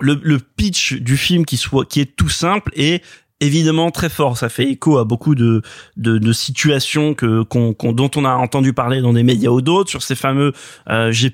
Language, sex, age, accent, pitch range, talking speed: French, male, 20-39, French, 125-155 Hz, 220 wpm